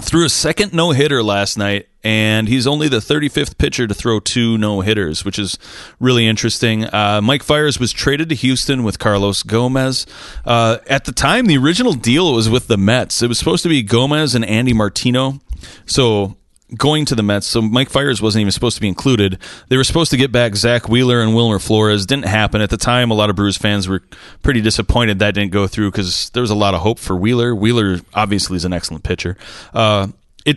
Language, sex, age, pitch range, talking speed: English, male, 30-49, 100-130 Hz, 215 wpm